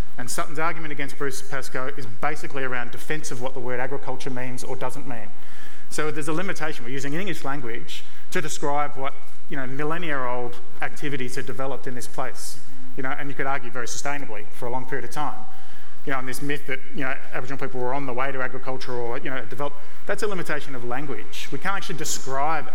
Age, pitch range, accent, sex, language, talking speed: 30-49, 130-150 Hz, Australian, male, English, 215 wpm